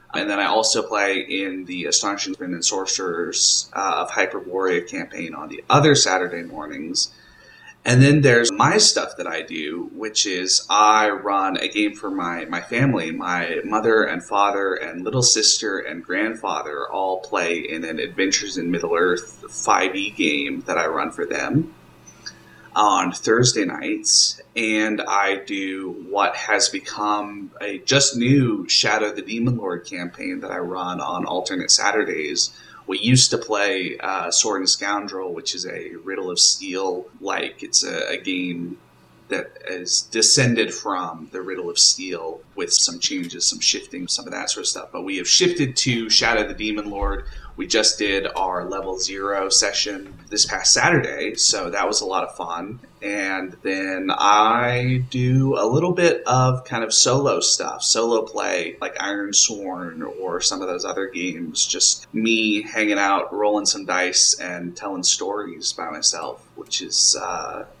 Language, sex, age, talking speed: English, male, 20-39, 165 wpm